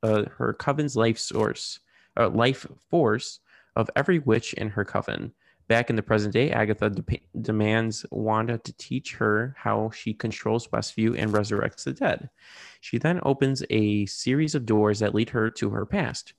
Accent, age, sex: American, 20-39, male